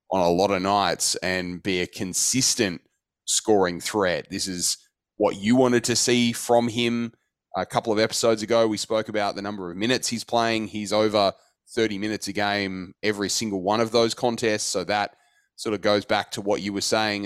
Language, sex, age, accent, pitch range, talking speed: English, male, 20-39, Australian, 105-125 Hz, 200 wpm